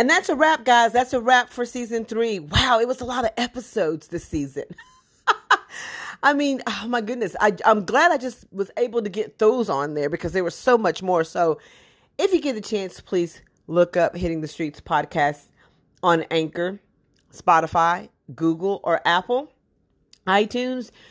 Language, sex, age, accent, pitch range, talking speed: English, female, 40-59, American, 160-230 Hz, 180 wpm